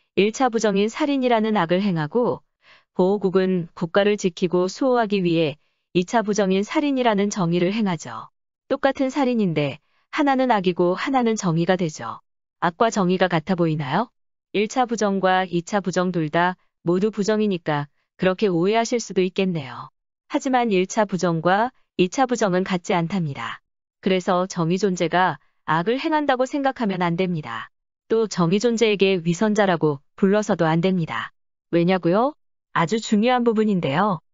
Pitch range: 175-220 Hz